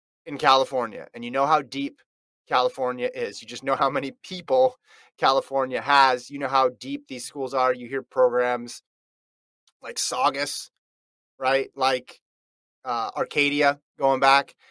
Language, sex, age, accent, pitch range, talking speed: English, male, 30-49, American, 135-200 Hz, 145 wpm